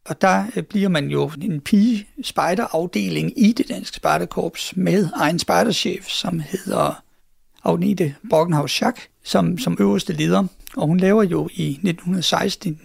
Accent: native